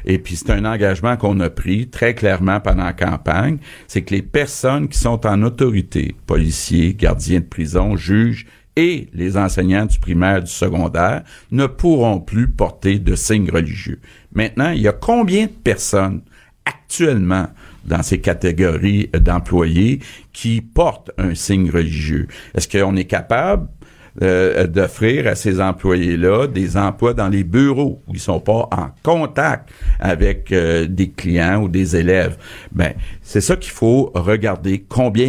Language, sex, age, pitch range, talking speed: French, male, 60-79, 90-115 Hz, 155 wpm